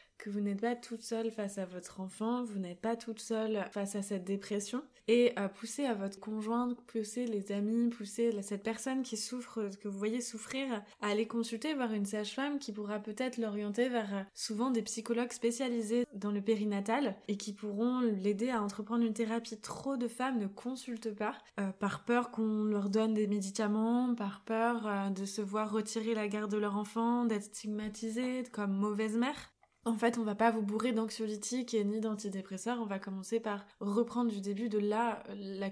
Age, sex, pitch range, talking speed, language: 20-39, female, 205-235 Hz, 195 wpm, French